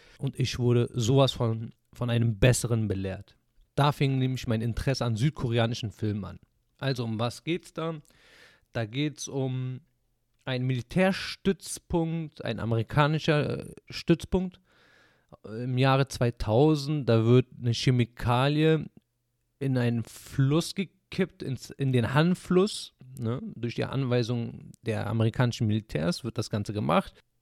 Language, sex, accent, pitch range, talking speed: German, male, German, 115-135 Hz, 125 wpm